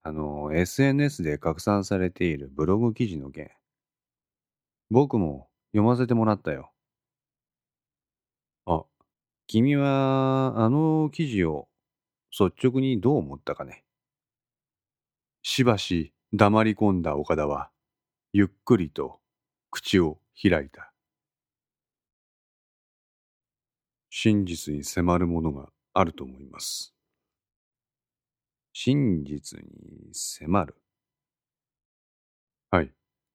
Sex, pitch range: male, 75-110 Hz